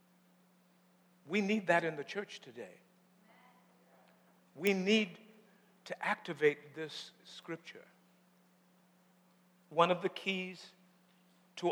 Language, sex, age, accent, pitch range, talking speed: English, male, 60-79, American, 160-185 Hz, 90 wpm